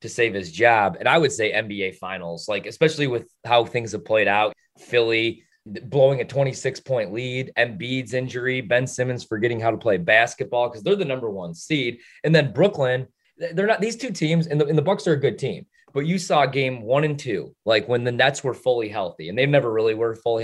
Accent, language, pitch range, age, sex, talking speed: American, English, 115-165 Hz, 20-39, male, 225 wpm